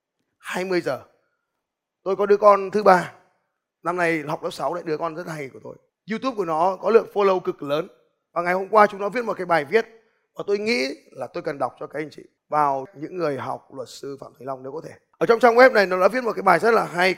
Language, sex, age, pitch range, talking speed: Vietnamese, male, 20-39, 170-220 Hz, 265 wpm